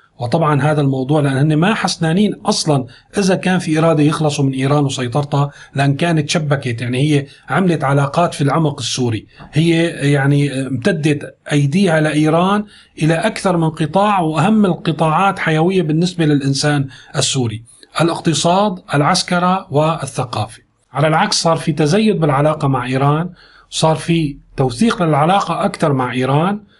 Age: 40-59